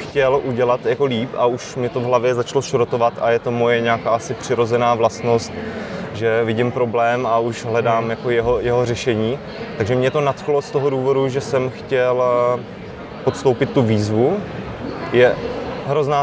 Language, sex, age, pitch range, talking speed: Czech, male, 20-39, 115-125 Hz, 165 wpm